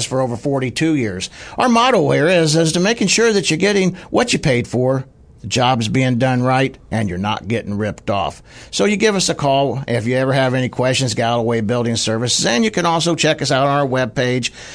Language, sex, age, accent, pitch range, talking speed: English, male, 60-79, American, 115-155 Hz, 225 wpm